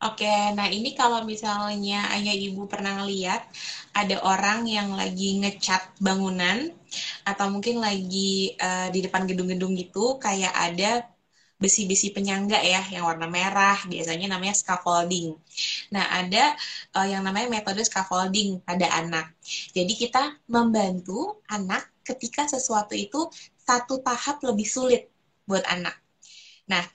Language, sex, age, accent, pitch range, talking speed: Indonesian, female, 20-39, native, 185-235 Hz, 125 wpm